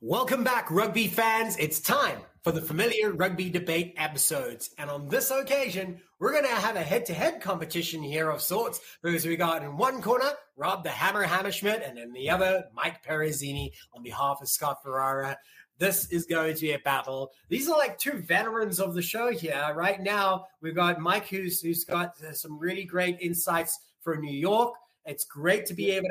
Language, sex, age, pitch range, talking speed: English, male, 30-49, 165-215 Hz, 190 wpm